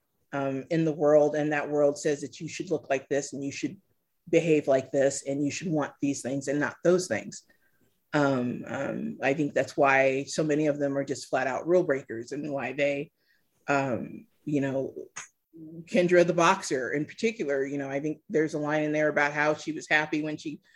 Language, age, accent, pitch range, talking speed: English, 30-49, American, 140-165 Hz, 210 wpm